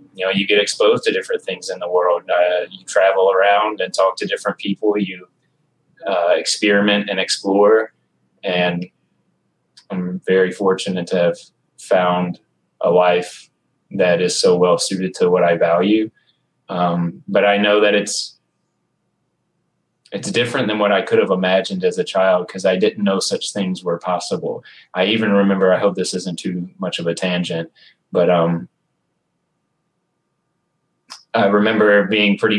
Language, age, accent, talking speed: English, 20-39, American, 160 wpm